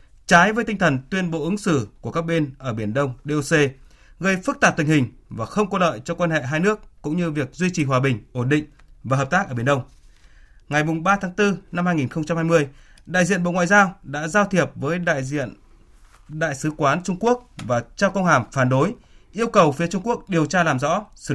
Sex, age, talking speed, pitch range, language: male, 20-39, 235 wpm, 125-170 Hz, Vietnamese